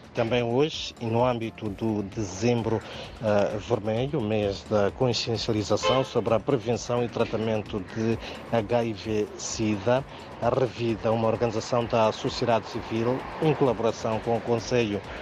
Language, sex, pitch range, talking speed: Portuguese, male, 105-125 Hz, 115 wpm